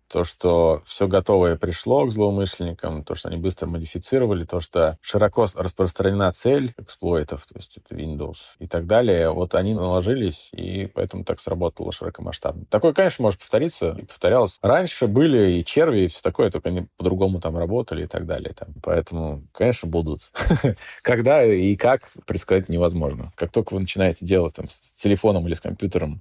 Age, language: 20-39, Russian